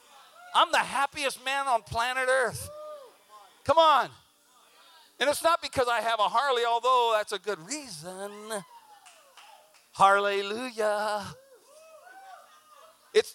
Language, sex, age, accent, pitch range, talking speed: English, male, 50-69, American, 130-215 Hz, 110 wpm